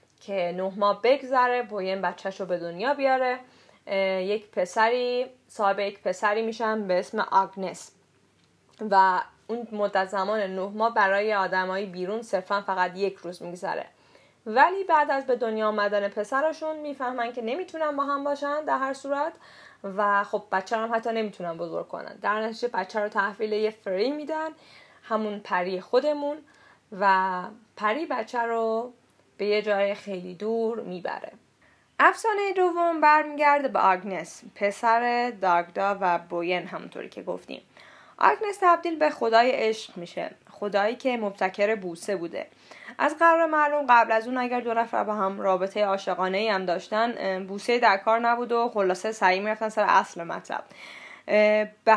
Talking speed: 150 wpm